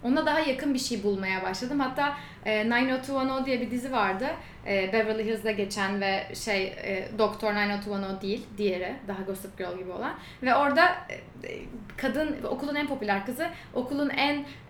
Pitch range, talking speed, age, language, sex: 205-265 Hz, 145 wpm, 10-29, Turkish, female